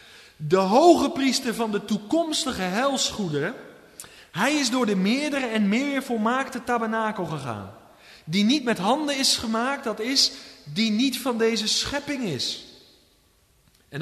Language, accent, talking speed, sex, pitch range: Dutch, Dutch, 135 wpm, male, 195-270 Hz